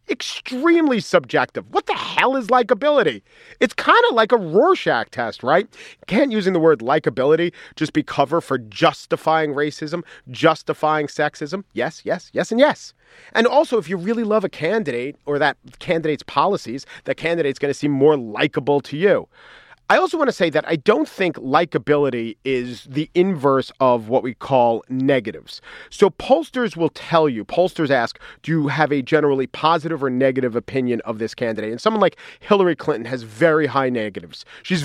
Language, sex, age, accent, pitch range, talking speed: English, male, 40-59, American, 135-195 Hz, 175 wpm